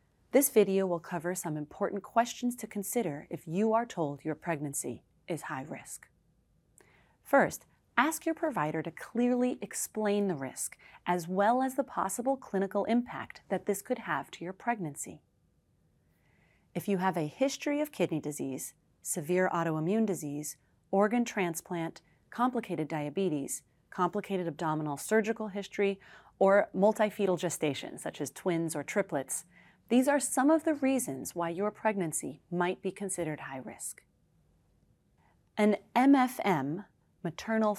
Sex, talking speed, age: female, 135 wpm, 30-49